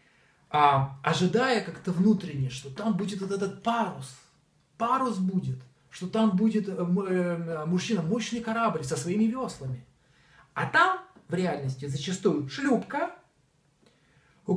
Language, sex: Russian, male